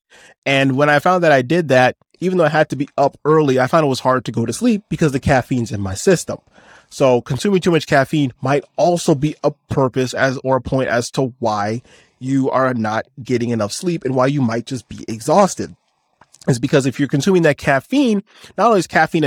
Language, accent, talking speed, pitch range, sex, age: English, American, 225 wpm, 120-150 Hz, male, 20-39